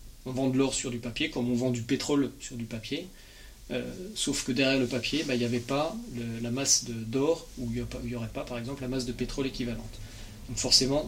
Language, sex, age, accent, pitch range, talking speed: French, male, 40-59, French, 115-140 Hz, 245 wpm